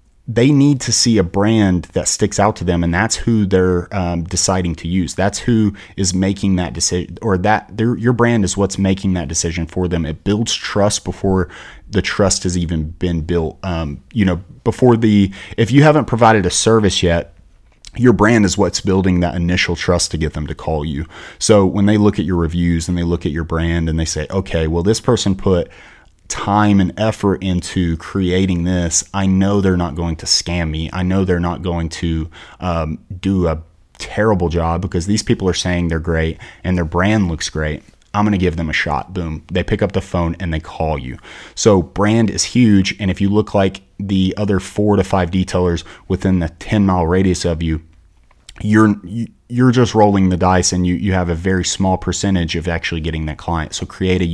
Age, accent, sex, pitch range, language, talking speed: 30-49, American, male, 85-100 Hz, English, 210 wpm